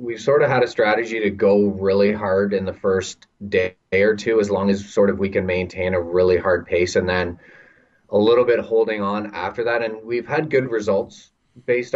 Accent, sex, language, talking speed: American, male, English, 215 wpm